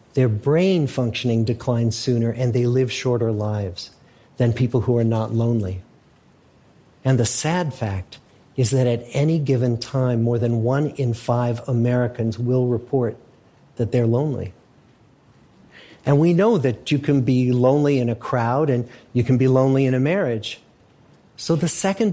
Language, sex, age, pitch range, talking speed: English, male, 50-69, 120-145 Hz, 160 wpm